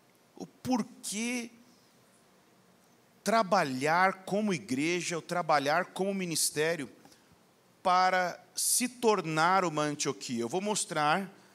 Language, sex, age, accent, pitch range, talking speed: Portuguese, male, 40-59, Brazilian, 150-205 Hz, 90 wpm